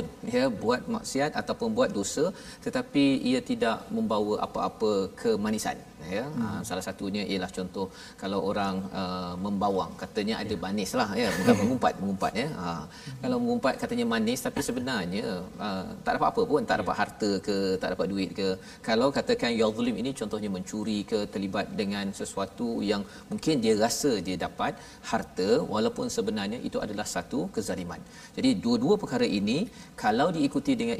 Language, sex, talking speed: Malayalam, male, 150 wpm